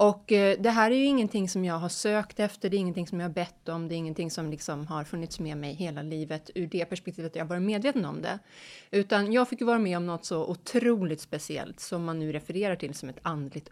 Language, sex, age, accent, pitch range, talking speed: Swedish, female, 30-49, native, 170-220 Hz, 260 wpm